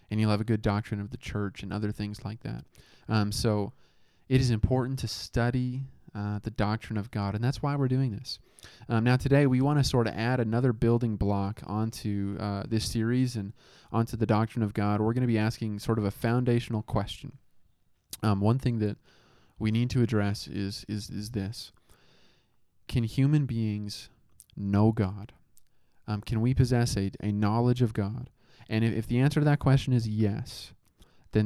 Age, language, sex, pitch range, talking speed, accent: 20-39, English, male, 105-125 Hz, 195 wpm, American